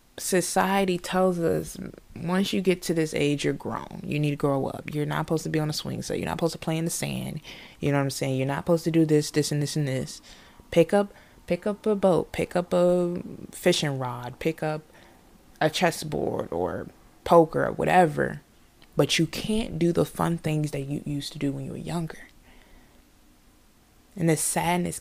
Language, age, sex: English, 20-39, female